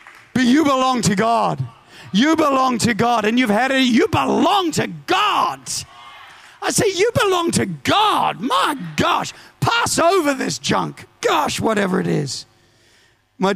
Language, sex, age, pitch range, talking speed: English, male, 40-59, 125-175 Hz, 150 wpm